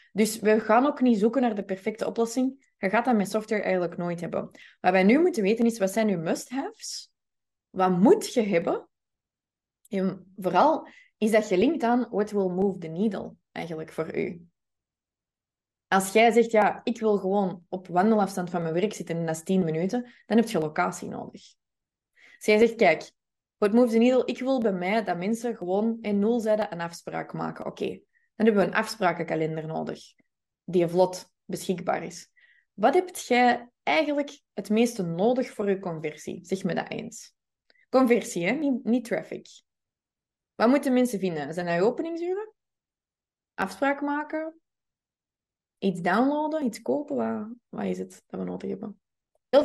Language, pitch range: Dutch, 185-255 Hz